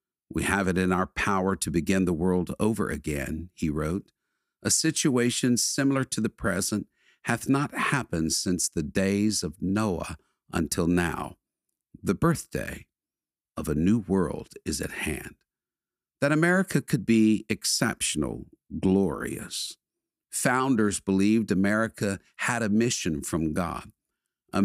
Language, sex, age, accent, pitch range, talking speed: English, male, 50-69, American, 90-110 Hz, 130 wpm